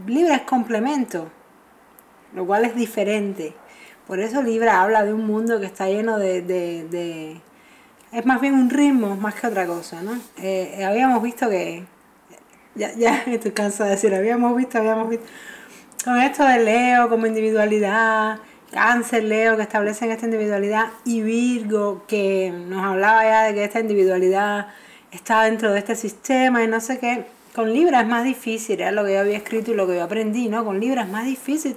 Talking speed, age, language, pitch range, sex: 185 wpm, 30-49, Spanish, 205-245 Hz, female